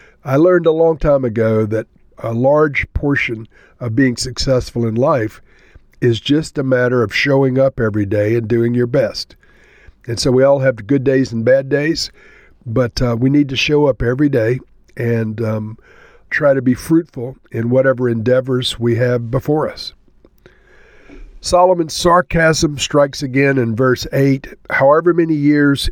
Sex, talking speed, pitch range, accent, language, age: male, 160 wpm, 120-145 Hz, American, English, 50-69